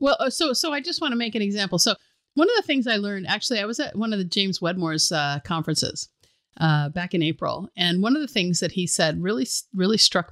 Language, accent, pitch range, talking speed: English, American, 155-210 Hz, 250 wpm